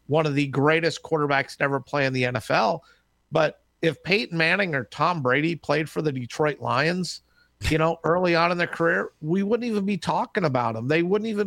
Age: 50-69